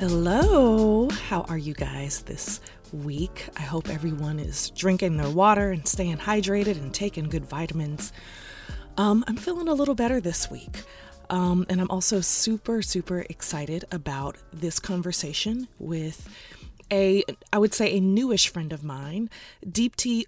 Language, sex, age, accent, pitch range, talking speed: English, female, 20-39, American, 165-210 Hz, 150 wpm